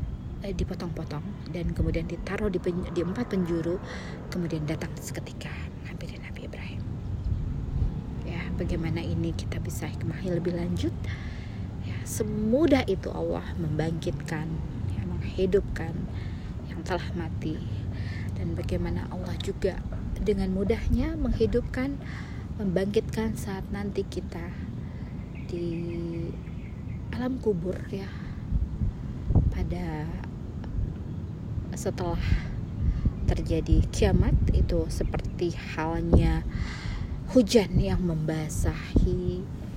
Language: Indonesian